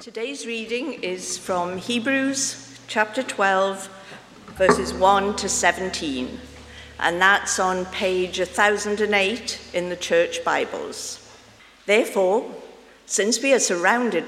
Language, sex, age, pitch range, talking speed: English, female, 50-69, 180-235 Hz, 105 wpm